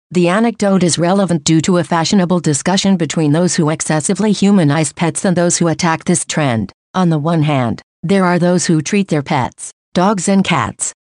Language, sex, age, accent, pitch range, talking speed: English, female, 50-69, American, 155-195 Hz, 190 wpm